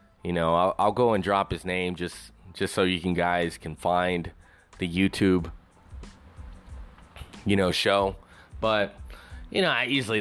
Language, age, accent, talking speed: English, 20-39, American, 160 wpm